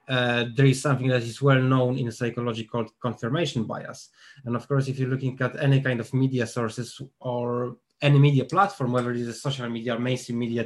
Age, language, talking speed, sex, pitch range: 20-39, English, 205 wpm, male, 120-140 Hz